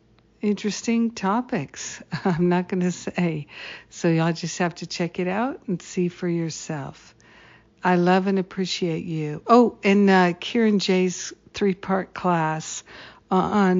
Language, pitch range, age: English, 155-190 Hz, 60-79